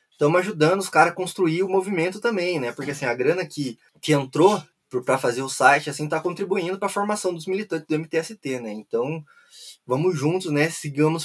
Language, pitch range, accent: Portuguese, 145-195 Hz, Brazilian